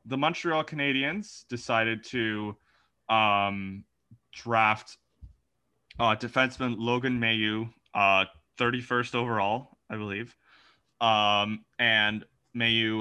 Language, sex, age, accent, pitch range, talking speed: English, male, 20-39, American, 105-120 Hz, 90 wpm